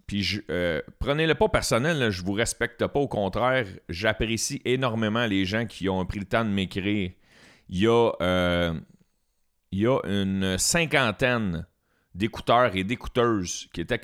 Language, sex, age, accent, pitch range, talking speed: French, male, 40-59, Canadian, 95-120 Hz, 145 wpm